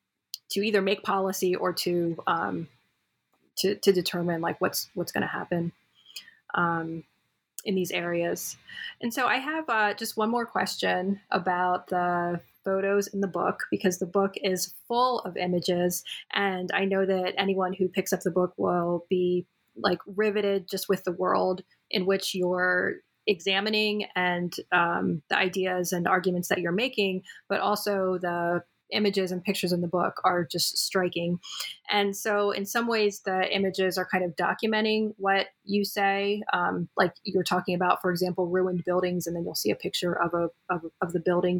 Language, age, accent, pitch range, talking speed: English, 30-49, American, 180-205 Hz, 175 wpm